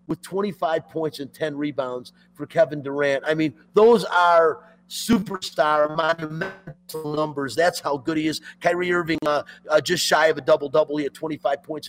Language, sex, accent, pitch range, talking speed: English, male, American, 155-190 Hz, 170 wpm